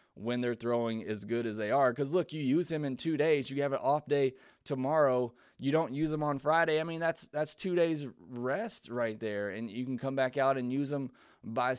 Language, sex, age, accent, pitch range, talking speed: English, male, 20-39, American, 115-150 Hz, 240 wpm